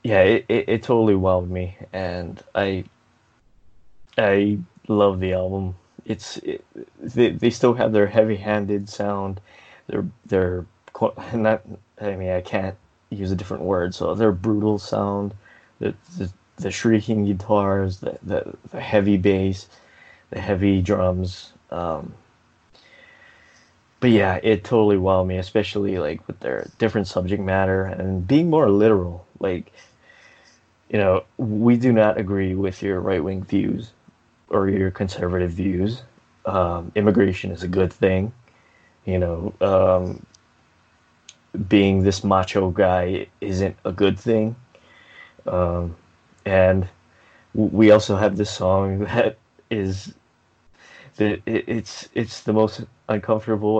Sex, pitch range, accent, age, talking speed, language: male, 95-110 Hz, American, 20-39, 125 wpm, English